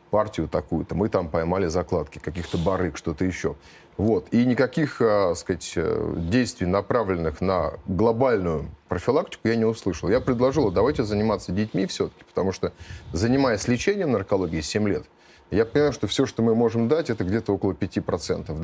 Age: 30-49